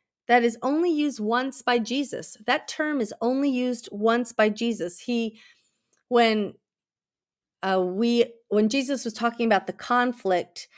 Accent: American